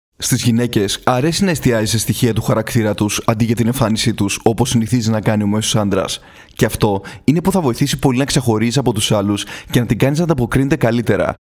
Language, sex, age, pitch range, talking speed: Greek, male, 20-39, 110-140 Hz, 210 wpm